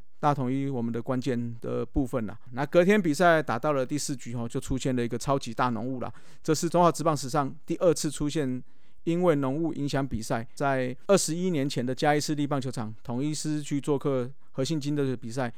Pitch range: 125-150 Hz